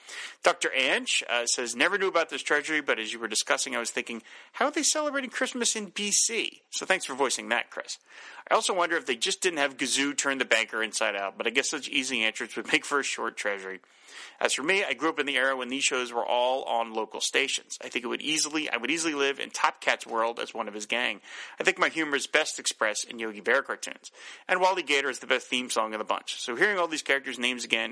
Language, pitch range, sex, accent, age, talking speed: English, 120-165 Hz, male, American, 30-49, 255 wpm